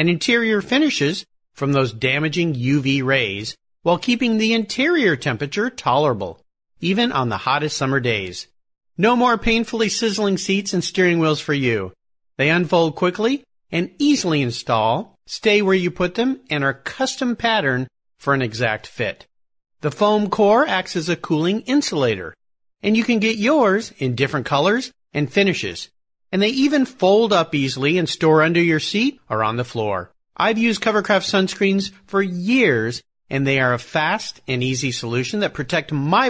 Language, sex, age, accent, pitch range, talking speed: English, male, 50-69, American, 130-215 Hz, 165 wpm